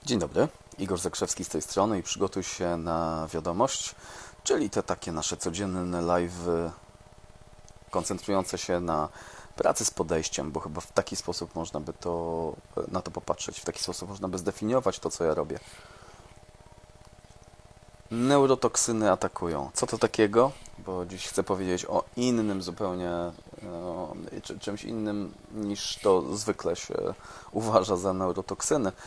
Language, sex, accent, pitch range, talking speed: Polish, male, native, 90-105 Hz, 135 wpm